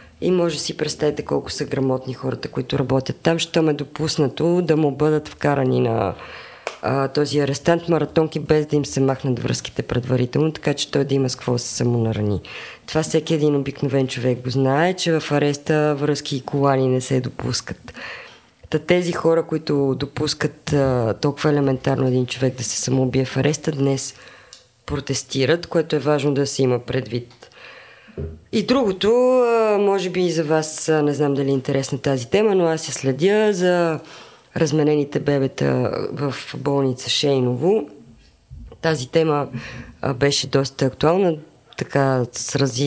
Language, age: Bulgarian, 20-39